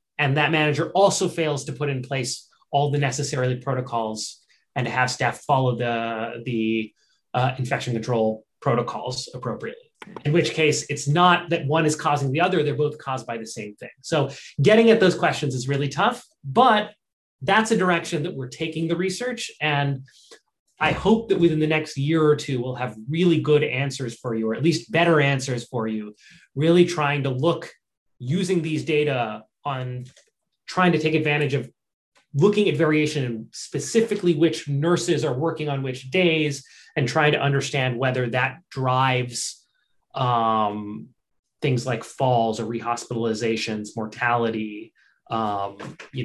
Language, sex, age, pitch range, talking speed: English, male, 30-49, 120-160 Hz, 160 wpm